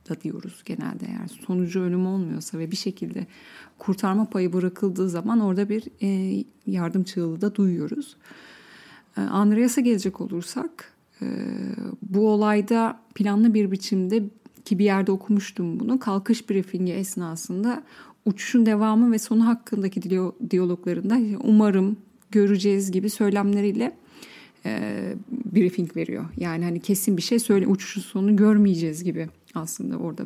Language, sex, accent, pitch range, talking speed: Turkish, female, native, 190-230 Hz, 120 wpm